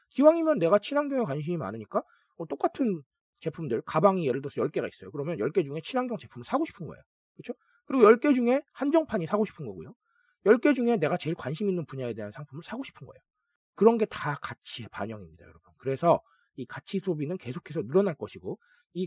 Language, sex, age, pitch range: Korean, male, 40-59, 150-240 Hz